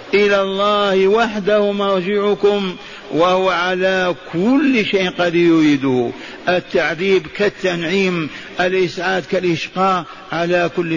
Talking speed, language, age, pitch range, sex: 90 wpm, Arabic, 50-69, 175-200 Hz, male